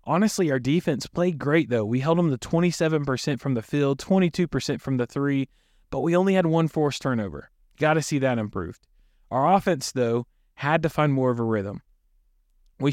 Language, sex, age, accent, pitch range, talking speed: English, male, 20-39, American, 115-150 Hz, 190 wpm